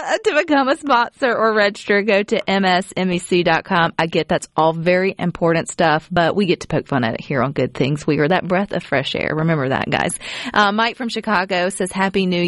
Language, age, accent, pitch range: English, 30-49, American, 155-185 Hz